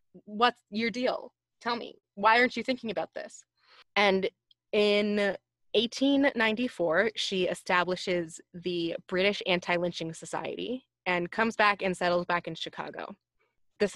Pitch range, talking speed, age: 180-215 Hz, 130 wpm, 20-39